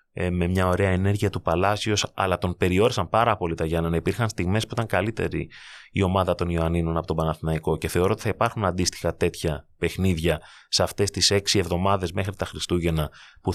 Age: 30-49